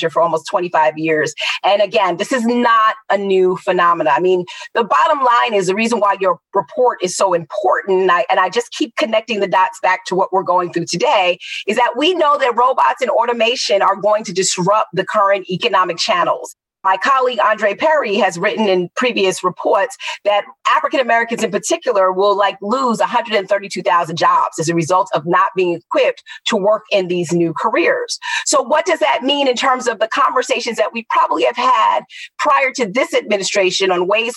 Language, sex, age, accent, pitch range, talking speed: English, female, 30-49, American, 190-255 Hz, 190 wpm